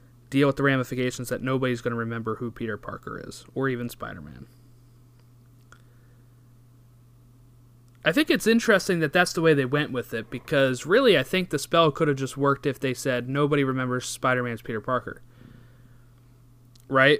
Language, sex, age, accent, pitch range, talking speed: English, male, 20-39, American, 120-135 Hz, 165 wpm